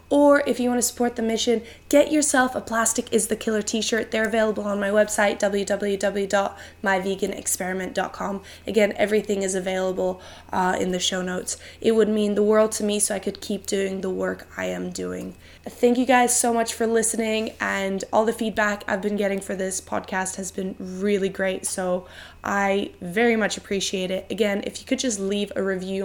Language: English